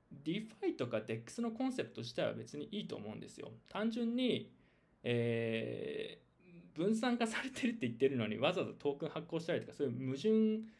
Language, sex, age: Japanese, male, 20-39